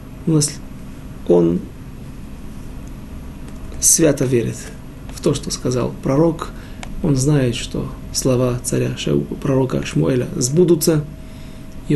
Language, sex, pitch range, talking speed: Russian, male, 130-175 Hz, 85 wpm